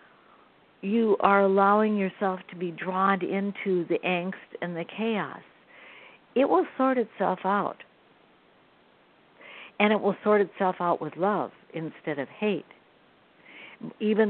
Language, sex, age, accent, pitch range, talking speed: English, female, 60-79, American, 180-230 Hz, 125 wpm